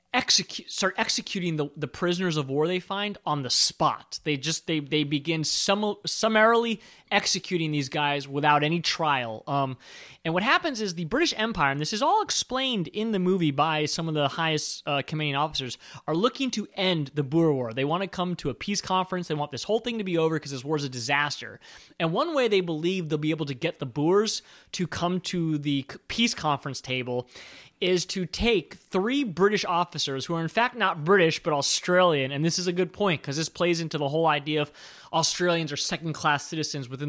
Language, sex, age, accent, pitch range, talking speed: English, male, 20-39, American, 145-195 Hz, 210 wpm